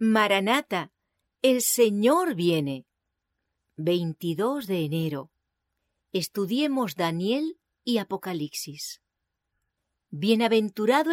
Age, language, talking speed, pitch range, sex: 40-59, English, 65 wpm, 165-235 Hz, female